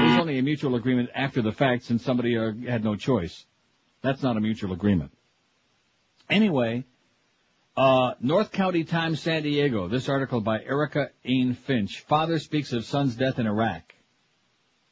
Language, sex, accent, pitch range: English, male, American, 120-145 Hz